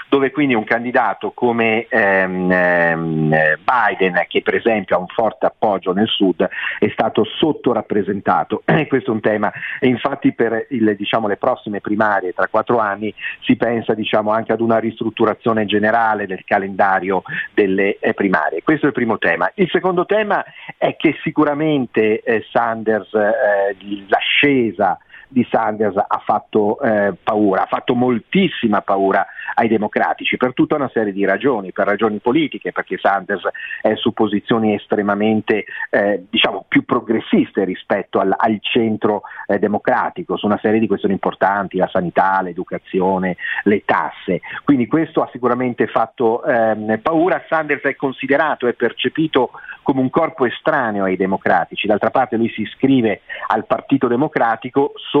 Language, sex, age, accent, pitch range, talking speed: Italian, male, 40-59, native, 100-130 Hz, 145 wpm